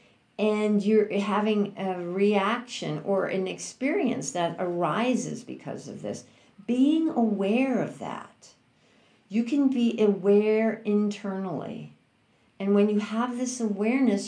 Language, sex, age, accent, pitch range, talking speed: English, female, 60-79, American, 175-220 Hz, 120 wpm